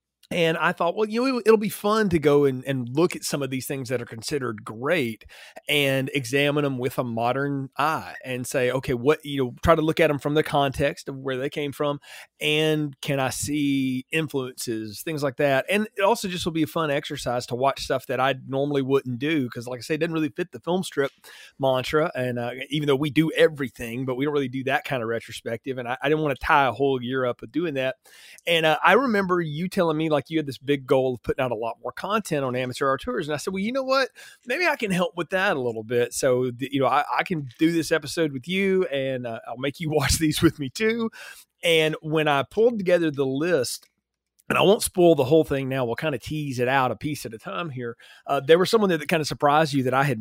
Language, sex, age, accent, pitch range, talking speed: English, male, 30-49, American, 130-160 Hz, 260 wpm